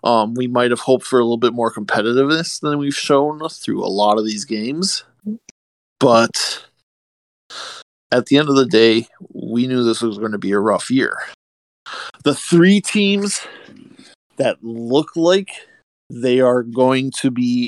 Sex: male